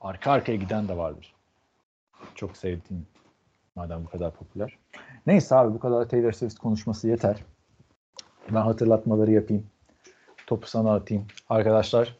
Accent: native